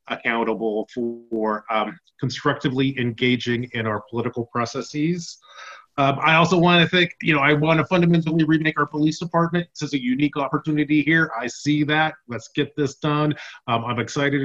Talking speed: 170 wpm